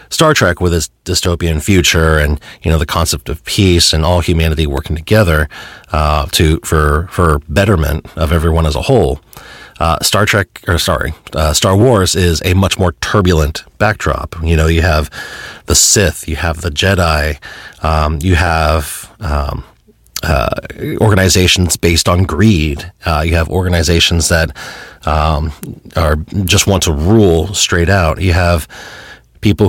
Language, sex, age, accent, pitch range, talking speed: English, male, 40-59, American, 80-95 Hz, 155 wpm